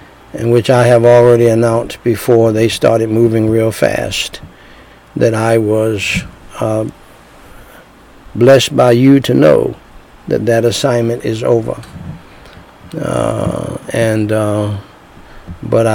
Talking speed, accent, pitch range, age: 115 wpm, American, 110-125 Hz, 60-79